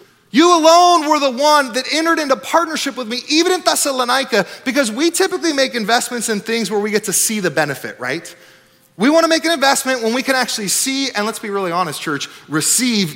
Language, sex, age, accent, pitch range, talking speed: English, male, 30-49, American, 205-280 Hz, 215 wpm